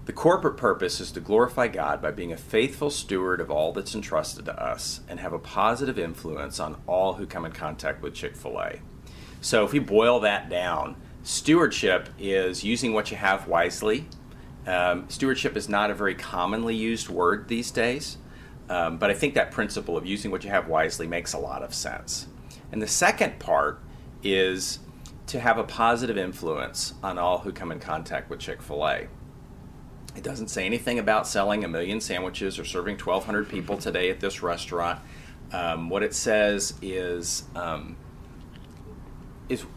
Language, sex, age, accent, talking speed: English, male, 40-59, American, 170 wpm